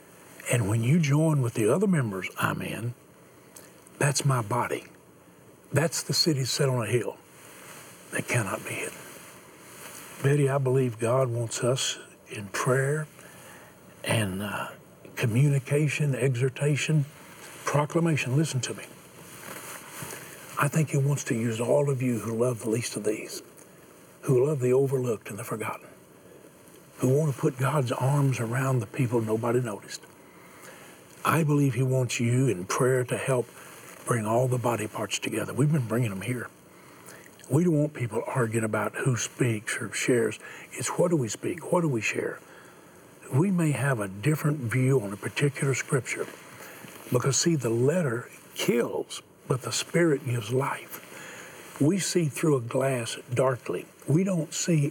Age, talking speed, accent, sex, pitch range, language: 60-79, 155 wpm, American, male, 120-145 Hz, English